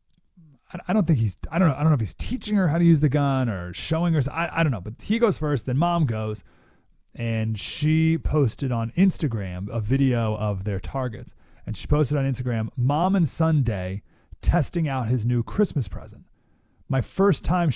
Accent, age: American, 30-49